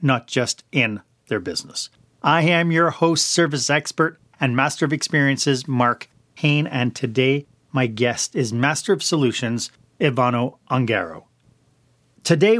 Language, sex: English, male